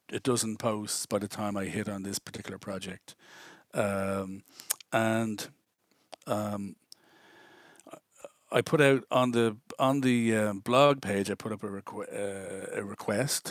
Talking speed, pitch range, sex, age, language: 145 wpm, 100-115 Hz, male, 40-59, English